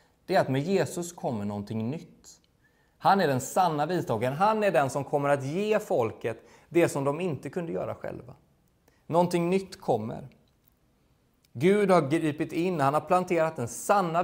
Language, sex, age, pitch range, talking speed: Swedish, male, 20-39, 135-200 Hz, 170 wpm